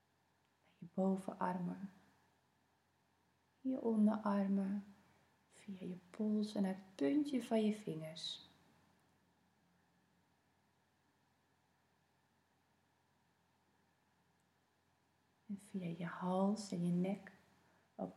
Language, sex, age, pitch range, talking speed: Dutch, female, 30-49, 180-225 Hz, 70 wpm